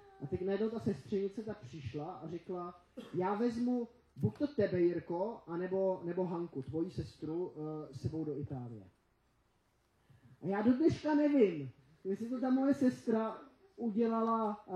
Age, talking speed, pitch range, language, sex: 20-39, 140 wpm, 155-215 Hz, Czech, male